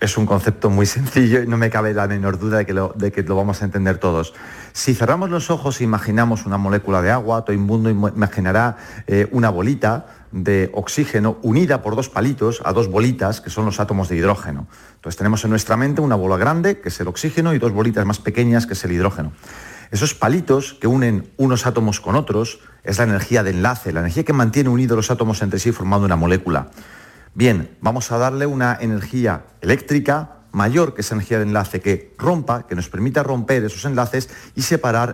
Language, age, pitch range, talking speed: Spanish, 40-59, 95-120 Hz, 205 wpm